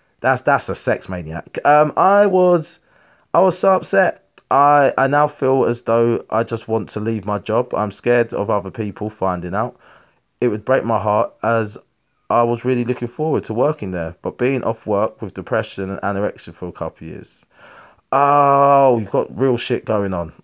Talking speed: 190 wpm